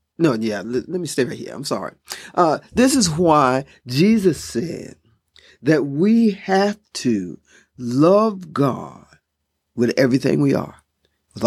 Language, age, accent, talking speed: English, 50-69, American, 135 wpm